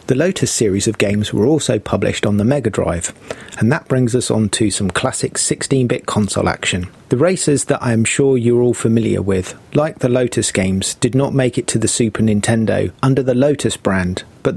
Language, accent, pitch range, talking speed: English, British, 105-125 Hz, 205 wpm